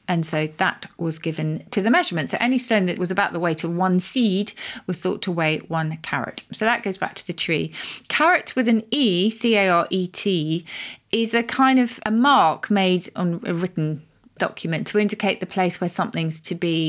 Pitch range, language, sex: 170-220 Hz, English, female